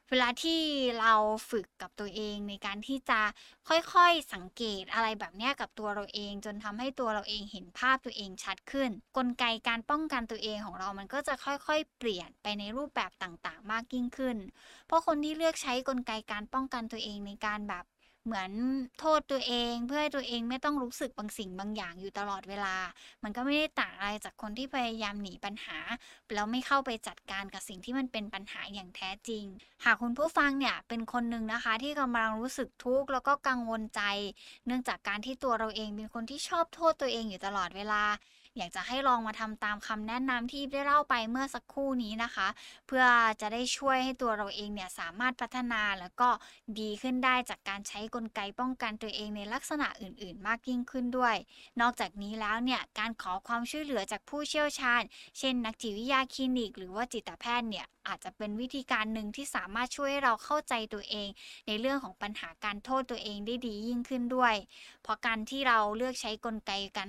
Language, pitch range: Thai, 210-255 Hz